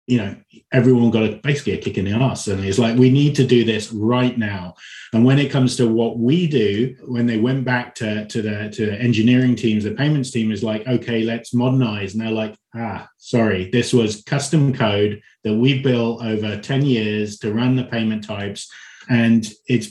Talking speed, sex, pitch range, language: 210 wpm, male, 110-130 Hz, English